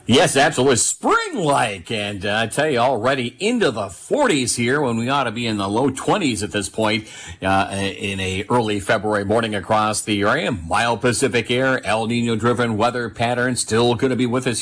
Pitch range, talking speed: 105-130 Hz, 195 wpm